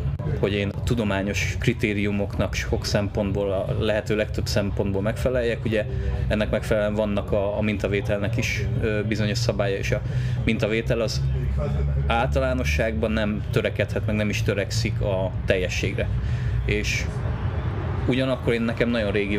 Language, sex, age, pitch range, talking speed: Hungarian, male, 20-39, 100-115 Hz, 125 wpm